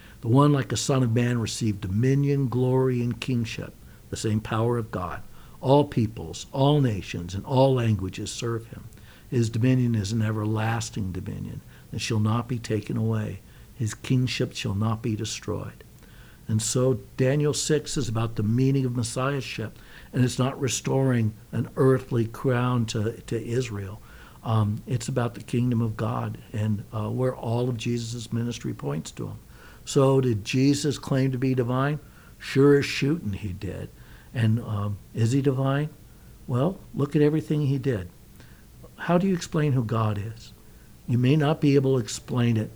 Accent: American